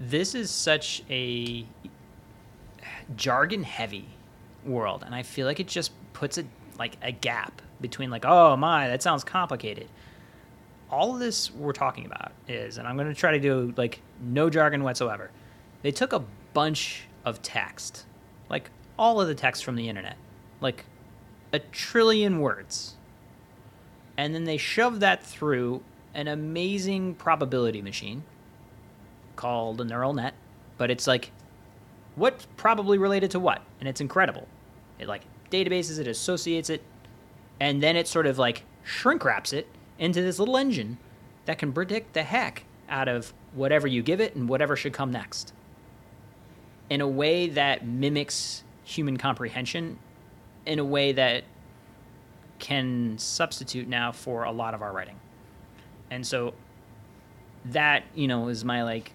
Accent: American